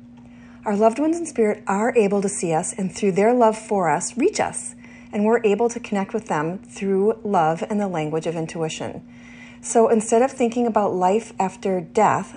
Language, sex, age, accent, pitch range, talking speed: English, female, 40-59, American, 160-215 Hz, 195 wpm